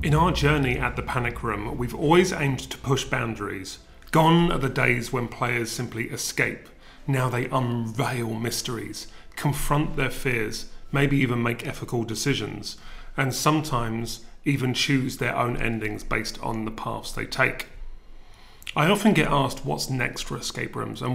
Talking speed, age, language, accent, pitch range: 160 wpm, 30-49, English, British, 120-150 Hz